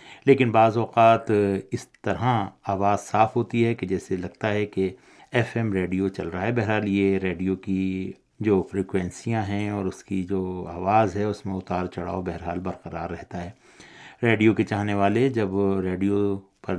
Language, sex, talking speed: Urdu, male, 170 wpm